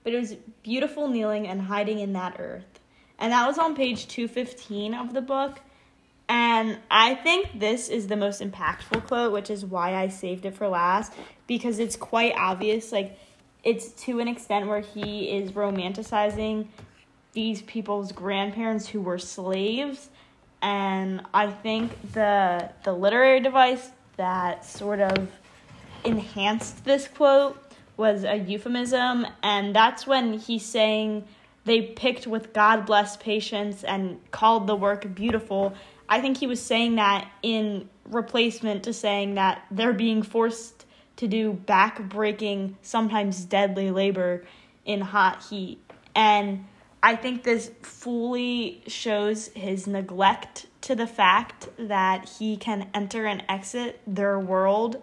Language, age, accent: English, 10-29, American